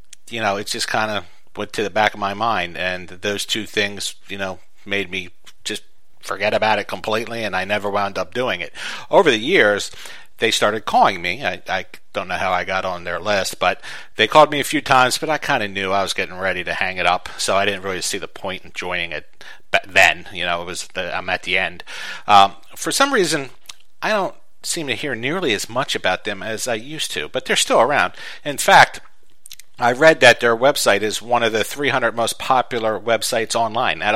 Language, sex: English, male